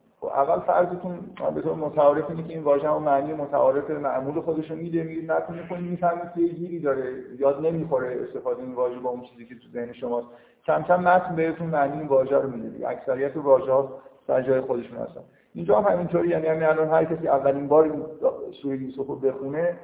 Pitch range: 130-165 Hz